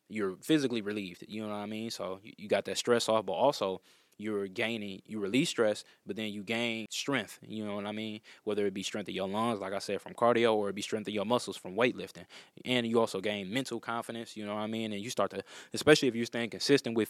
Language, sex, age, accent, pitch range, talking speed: English, male, 20-39, American, 100-120 Hz, 255 wpm